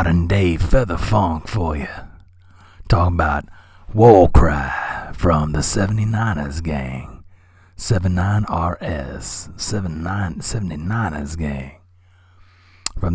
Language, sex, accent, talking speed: English, male, American, 85 wpm